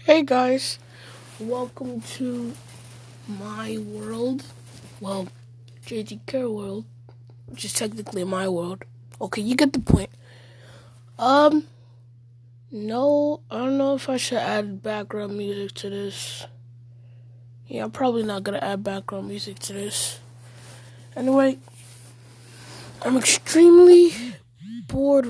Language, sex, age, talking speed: English, female, 20-39, 115 wpm